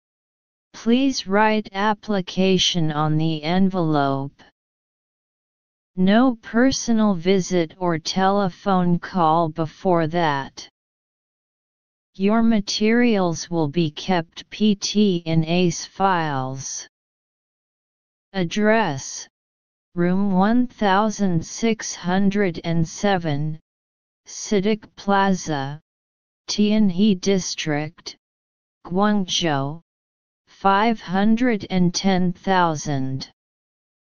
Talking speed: 55 wpm